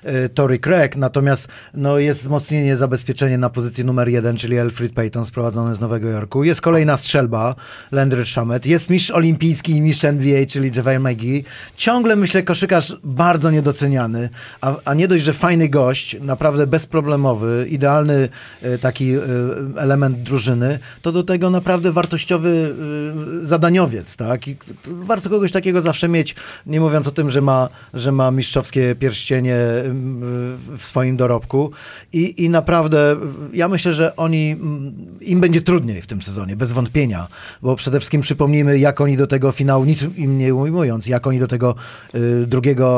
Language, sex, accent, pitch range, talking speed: Polish, male, native, 120-150 Hz, 160 wpm